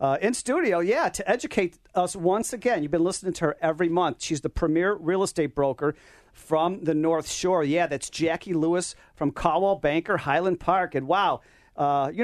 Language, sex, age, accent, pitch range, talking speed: English, male, 40-59, American, 155-200 Hz, 190 wpm